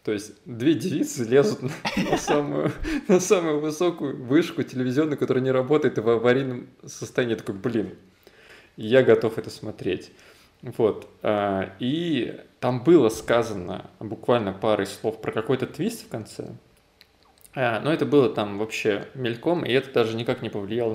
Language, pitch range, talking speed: Russian, 110-130 Hz, 150 wpm